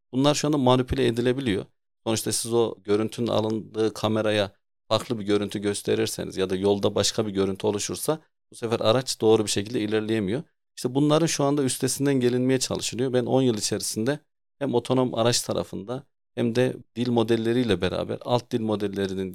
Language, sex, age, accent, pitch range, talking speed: Turkish, male, 40-59, native, 105-120 Hz, 160 wpm